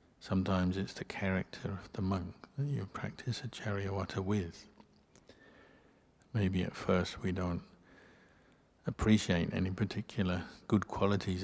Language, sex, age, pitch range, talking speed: English, male, 60-79, 90-100 Hz, 120 wpm